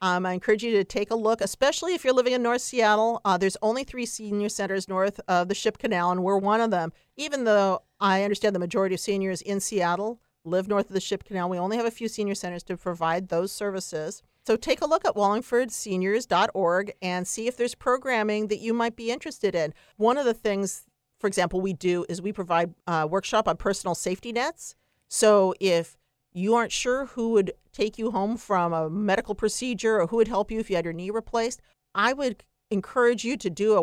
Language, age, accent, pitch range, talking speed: English, 50-69, American, 180-230 Hz, 220 wpm